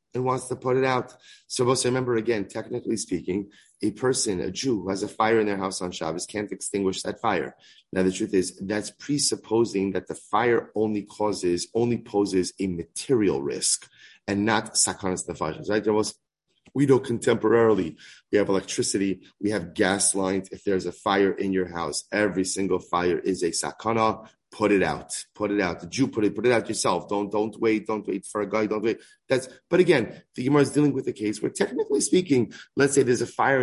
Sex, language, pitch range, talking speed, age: male, English, 95-125 Hz, 205 wpm, 30-49